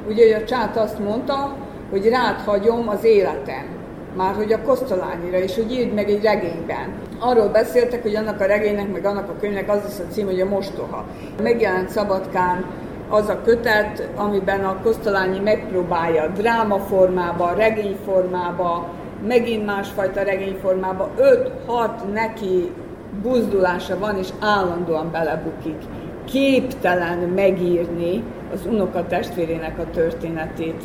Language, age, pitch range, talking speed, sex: Hungarian, 50-69, 180-220 Hz, 125 wpm, female